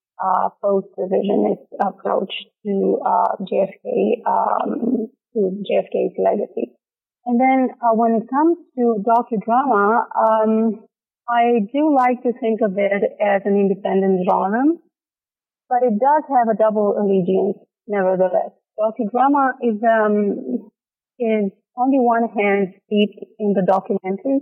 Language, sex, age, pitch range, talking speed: English, female, 30-49, 205-245 Hz, 125 wpm